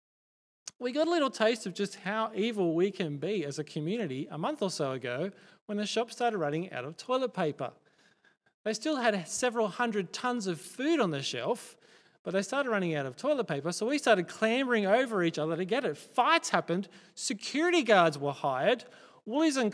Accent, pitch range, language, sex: Australian, 175-245 Hz, English, male